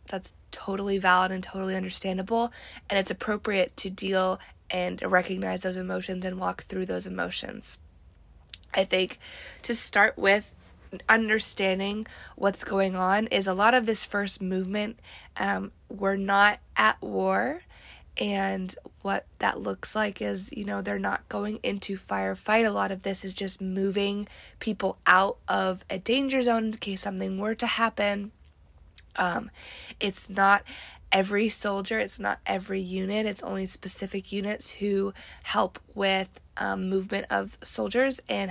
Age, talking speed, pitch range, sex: 20-39, 145 wpm, 185-210 Hz, female